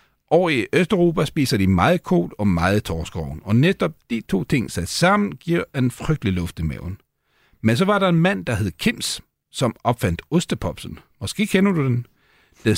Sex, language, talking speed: male, Danish, 190 wpm